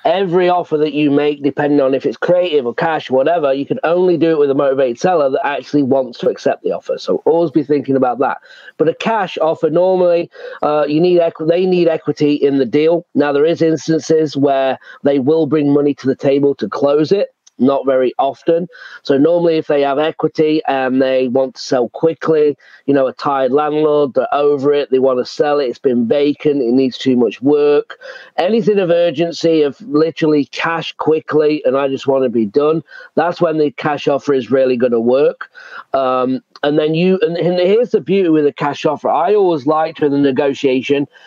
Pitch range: 140-170 Hz